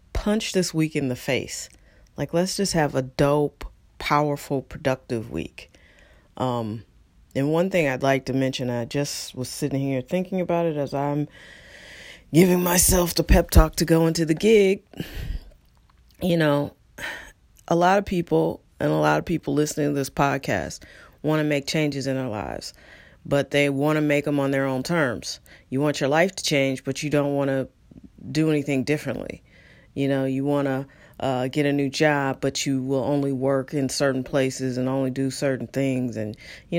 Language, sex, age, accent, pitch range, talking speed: English, female, 40-59, American, 135-170 Hz, 185 wpm